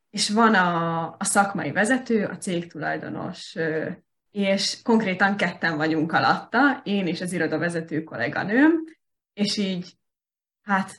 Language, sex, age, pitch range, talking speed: Hungarian, female, 20-39, 165-210 Hz, 120 wpm